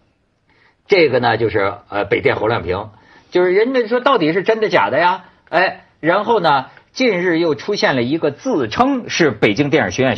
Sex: male